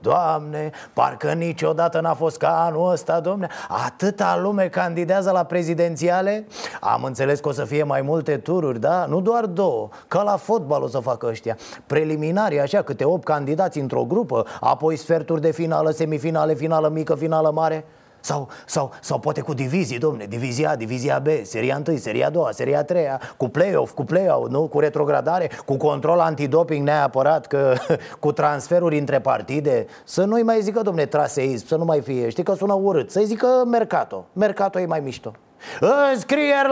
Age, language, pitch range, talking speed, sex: 30-49, Romanian, 155-235 Hz, 170 wpm, male